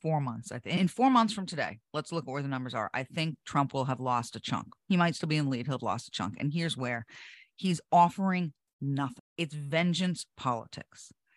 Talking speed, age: 240 wpm, 40-59